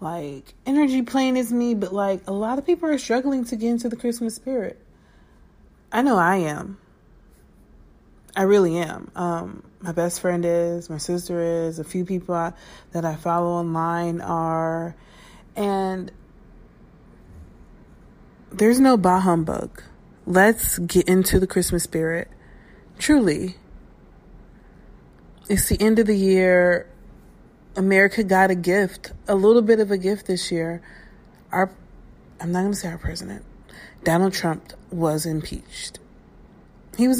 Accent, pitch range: American, 170-220 Hz